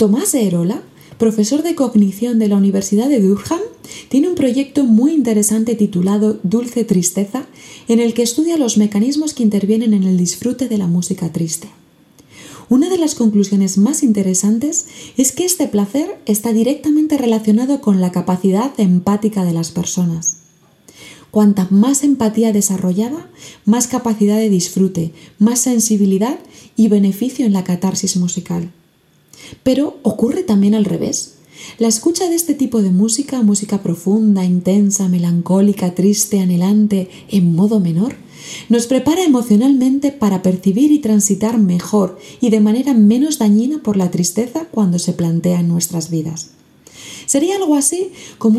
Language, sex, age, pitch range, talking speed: Spanish, female, 30-49, 190-260 Hz, 145 wpm